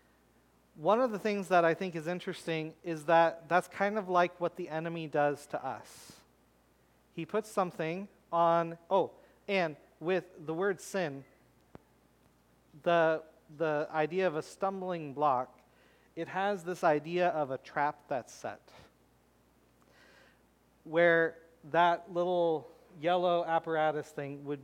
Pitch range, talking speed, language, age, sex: 130-180 Hz, 130 wpm, English, 40-59, male